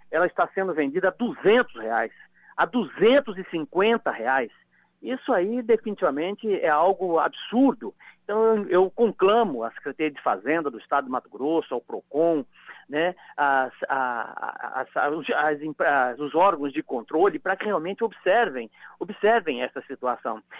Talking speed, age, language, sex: 145 wpm, 50-69, Portuguese, male